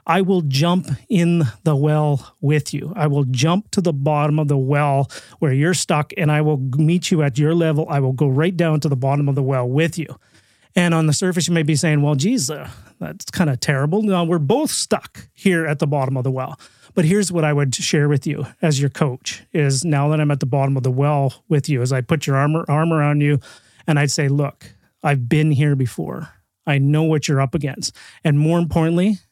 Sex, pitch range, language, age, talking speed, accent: male, 140-165 Hz, English, 30-49, 235 wpm, American